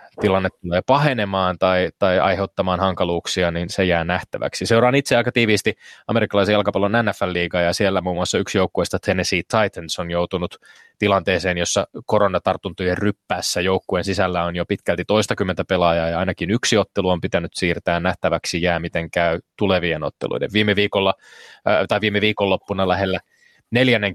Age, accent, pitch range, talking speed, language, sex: 20-39, native, 90-105 Hz, 150 wpm, Finnish, male